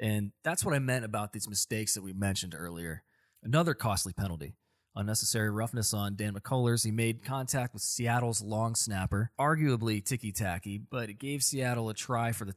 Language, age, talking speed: English, 20-39, 175 wpm